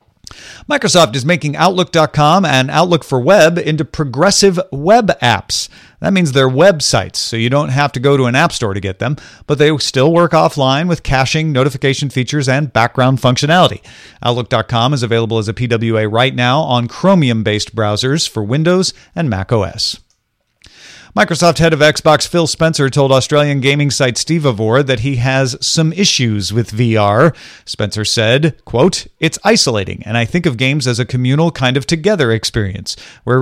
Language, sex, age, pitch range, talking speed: English, male, 40-59, 115-155 Hz, 170 wpm